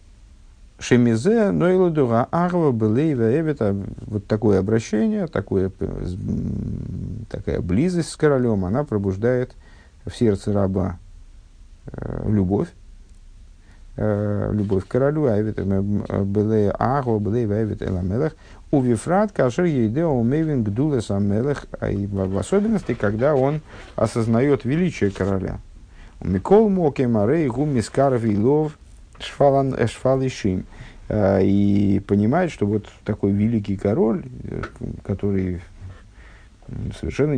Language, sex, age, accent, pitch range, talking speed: Russian, male, 50-69, native, 100-125 Hz, 100 wpm